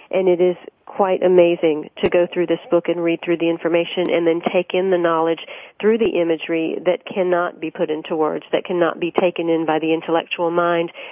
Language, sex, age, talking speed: English, female, 40-59, 210 wpm